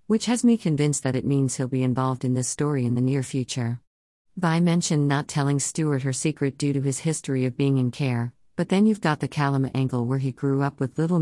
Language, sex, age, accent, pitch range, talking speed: English, female, 50-69, American, 130-165 Hz, 240 wpm